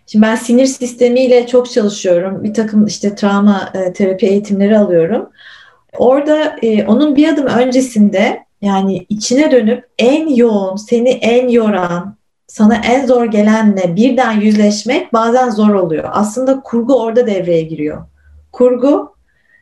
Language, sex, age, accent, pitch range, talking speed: Turkish, female, 30-49, native, 195-255 Hz, 130 wpm